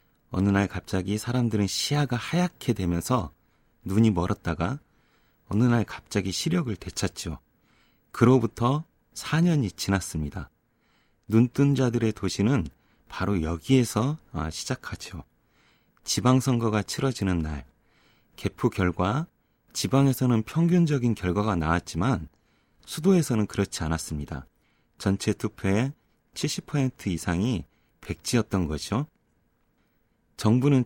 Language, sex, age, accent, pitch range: Korean, male, 30-49, native, 90-130 Hz